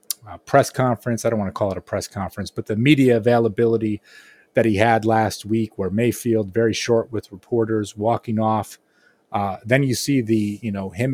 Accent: American